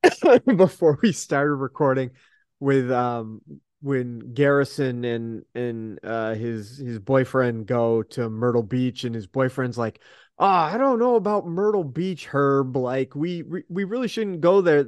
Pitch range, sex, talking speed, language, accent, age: 125-205 Hz, male, 155 wpm, English, American, 30-49